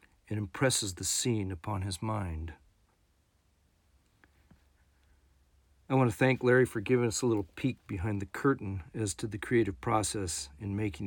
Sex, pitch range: male, 85-125 Hz